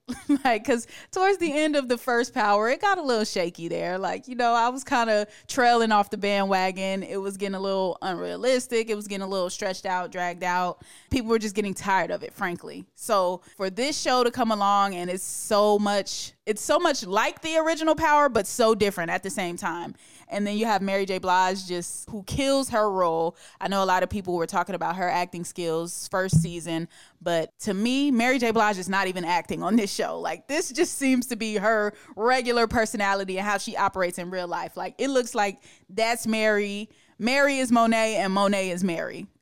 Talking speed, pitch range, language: 215 wpm, 185-235 Hz, English